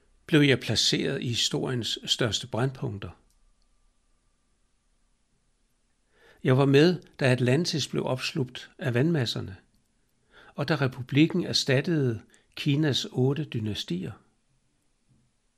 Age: 60-79